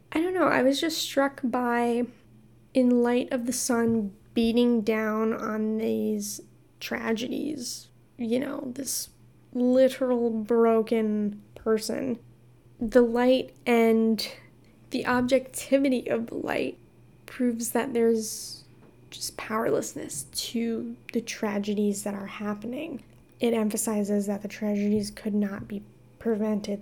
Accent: American